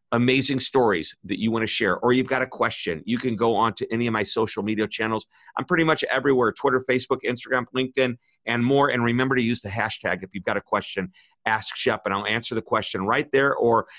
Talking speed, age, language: 230 wpm, 50-69, English